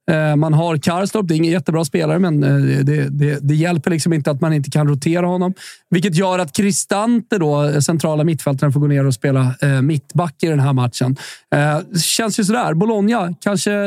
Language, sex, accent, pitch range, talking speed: Swedish, male, native, 150-185 Hz, 185 wpm